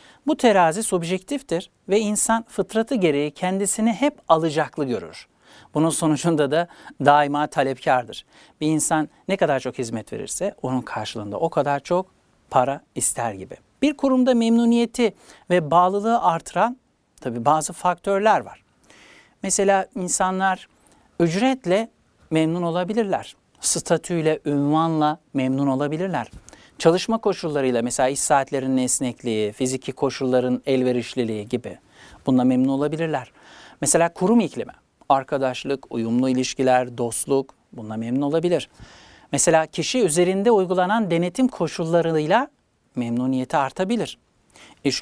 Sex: male